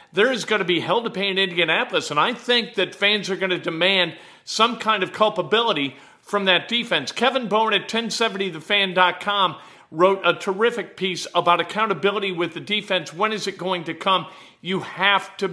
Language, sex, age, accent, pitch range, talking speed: English, male, 50-69, American, 165-200 Hz, 185 wpm